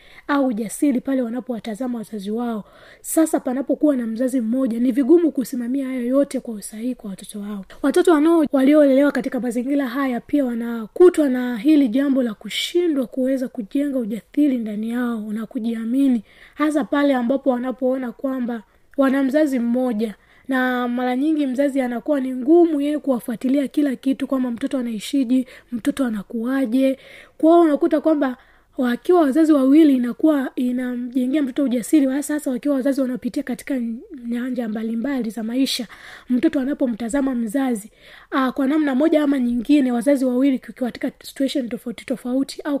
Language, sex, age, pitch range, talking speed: Swahili, female, 20-39, 245-285 Hz, 145 wpm